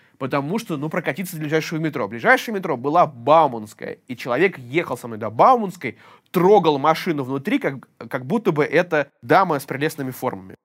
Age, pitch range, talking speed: 20-39, 130-190 Hz, 170 wpm